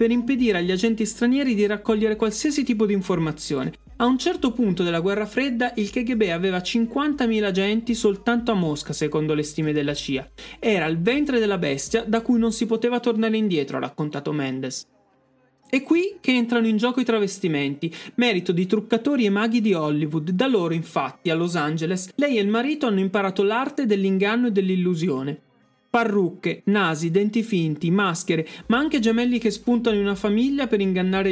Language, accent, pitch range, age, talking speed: Italian, native, 170-235 Hz, 30-49, 175 wpm